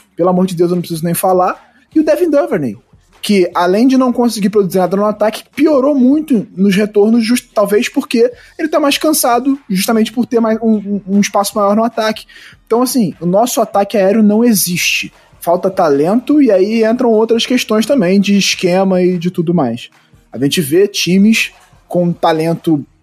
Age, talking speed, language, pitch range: 20-39, 180 wpm, Portuguese, 180-230 Hz